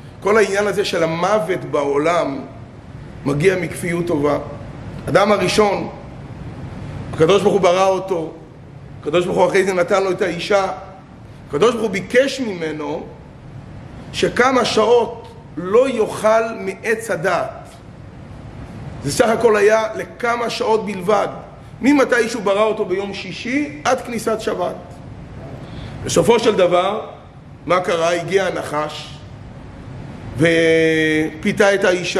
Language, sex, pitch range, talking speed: Hebrew, male, 145-205 Hz, 105 wpm